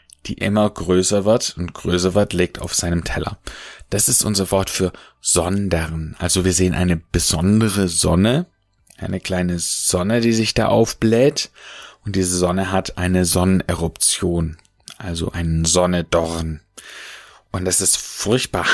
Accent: German